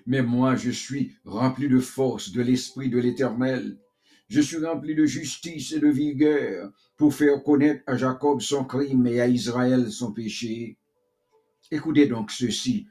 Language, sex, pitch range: English, male, 115-150 Hz